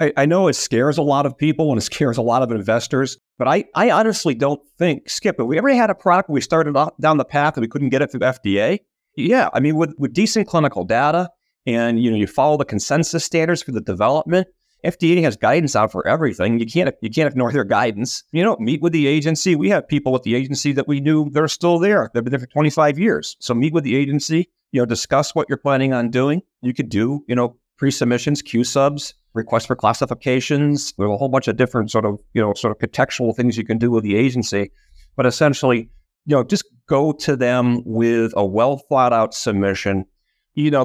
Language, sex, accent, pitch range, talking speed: English, male, American, 115-145 Hz, 235 wpm